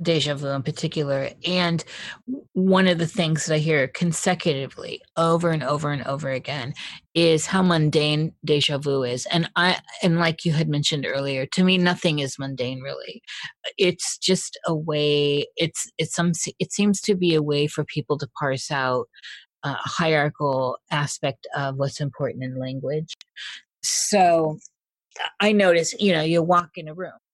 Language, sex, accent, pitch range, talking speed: English, female, American, 145-170 Hz, 165 wpm